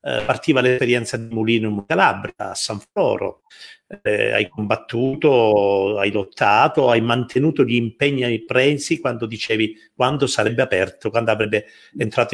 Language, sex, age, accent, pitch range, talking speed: Italian, male, 50-69, native, 125-170 Hz, 130 wpm